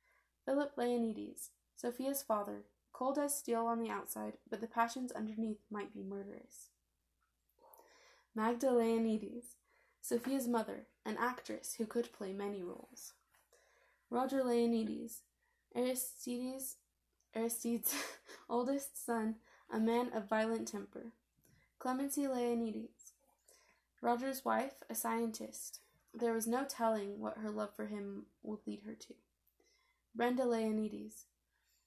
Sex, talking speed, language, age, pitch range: female, 115 wpm, English, 10-29, 220-250 Hz